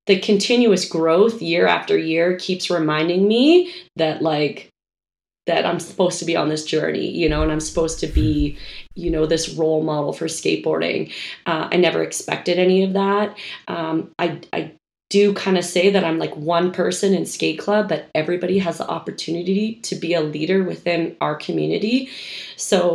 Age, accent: 30-49, American